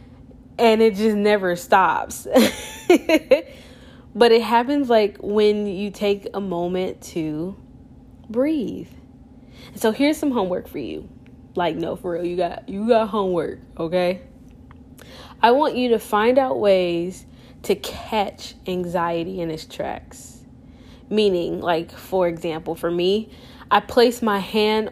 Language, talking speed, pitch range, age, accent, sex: English, 130 wpm, 175-210 Hz, 10-29, American, female